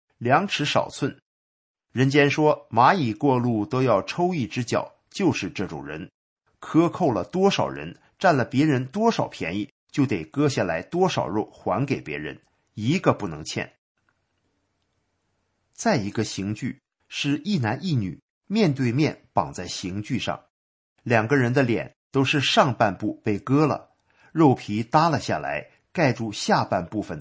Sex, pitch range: male, 105-145 Hz